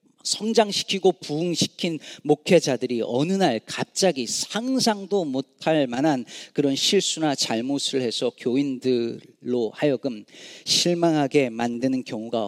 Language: Korean